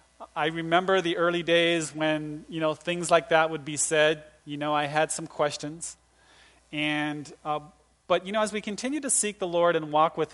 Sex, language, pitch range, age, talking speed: male, English, 150-180 Hz, 30-49, 205 wpm